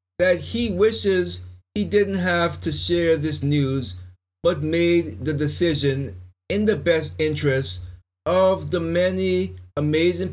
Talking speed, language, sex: 130 wpm, English, male